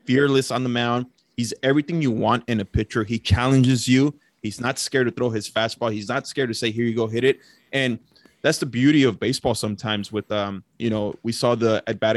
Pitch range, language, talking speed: 110-125 Hz, English, 230 wpm